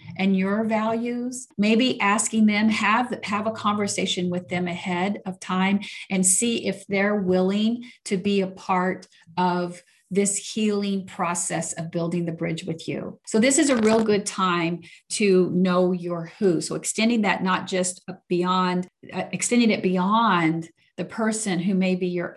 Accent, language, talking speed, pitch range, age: American, English, 160 wpm, 180-220 Hz, 40-59